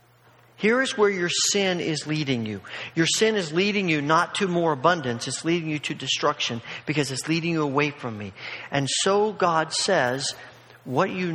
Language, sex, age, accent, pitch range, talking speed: English, male, 40-59, American, 150-200 Hz, 185 wpm